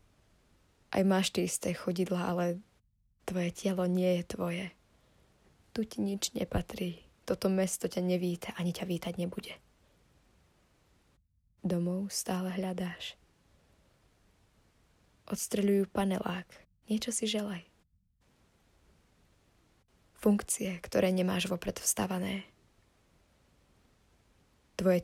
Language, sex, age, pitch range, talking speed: Slovak, female, 20-39, 140-195 Hz, 90 wpm